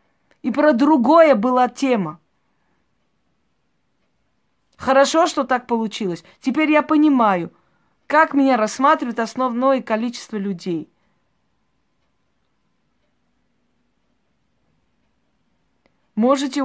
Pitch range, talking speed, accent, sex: 200-270 Hz, 70 wpm, native, female